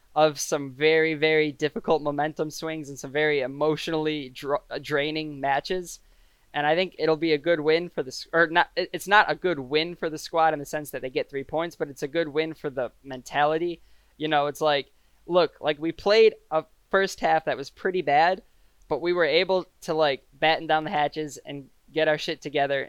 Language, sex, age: English, male, 20-39